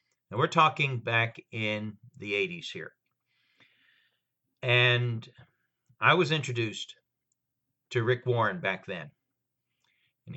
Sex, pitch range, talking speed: male, 110-130 Hz, 105 wpm